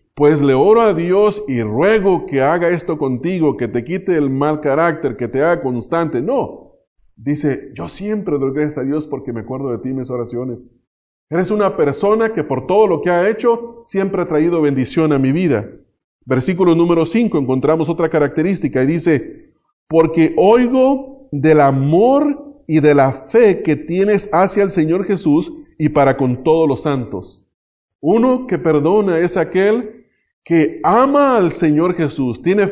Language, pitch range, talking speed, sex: English, 145-200 Hz, 170 wpm, male